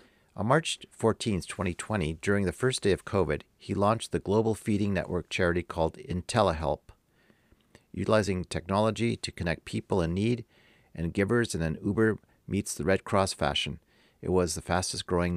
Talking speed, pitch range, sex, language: 155 wpm, 85-105 Hz, male, English